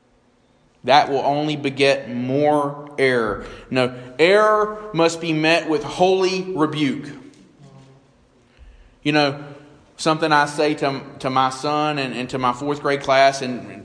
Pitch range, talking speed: 125-150 Hz, 140 wpm